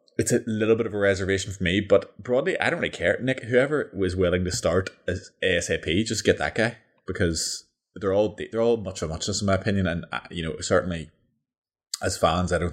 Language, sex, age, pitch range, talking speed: English, male, 20-39, 80-95 Hz, 210 wpm